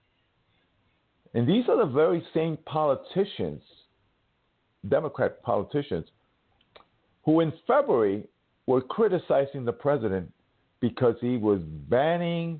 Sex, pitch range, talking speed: male, 100-145 Hz, 95 wpm